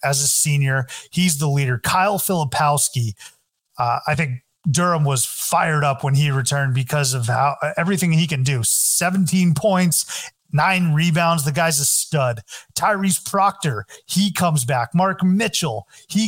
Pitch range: 135-165 Hz